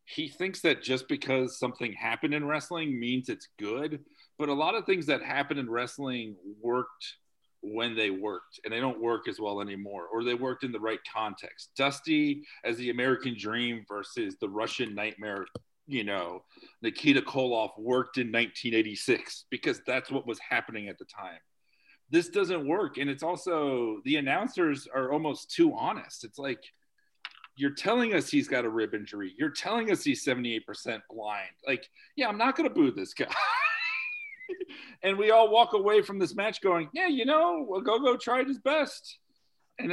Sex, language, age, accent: male, English, 40-59, American